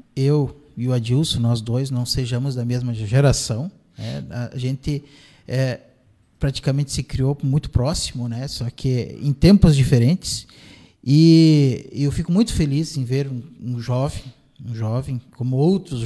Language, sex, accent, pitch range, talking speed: Portuguese, male, Brazilian, 125-165 Hz, 145 wpm